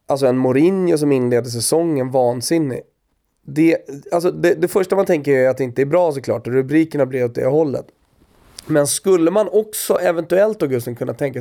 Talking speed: 180 wpm